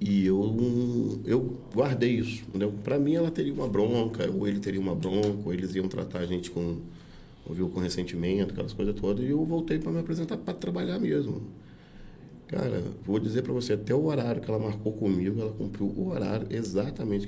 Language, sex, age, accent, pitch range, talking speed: Portuguese, male, 40-59, Brazilian, 100-145 Hz, 190 wpm